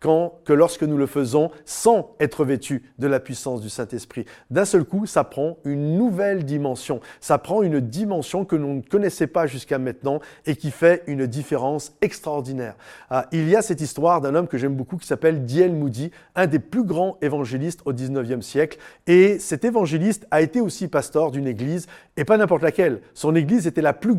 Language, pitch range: French, 140-185 Hz